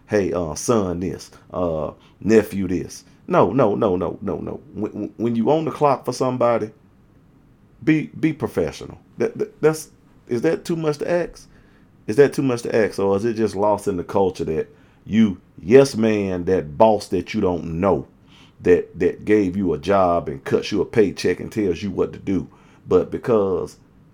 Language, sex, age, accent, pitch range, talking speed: English, male, 40-59, American, 100-135 Hz, 190 wpm